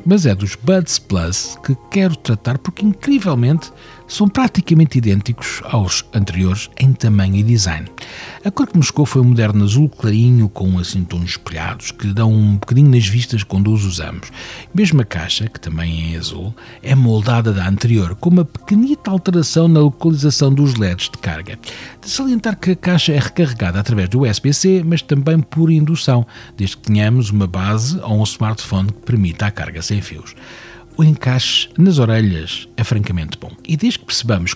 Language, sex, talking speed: Portuguese, male, 175 wpm